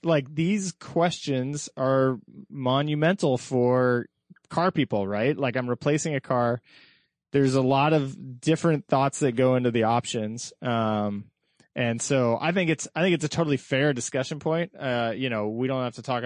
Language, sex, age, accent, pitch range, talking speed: English, male, 20-39, American, 115-140 Hz, 175 wpm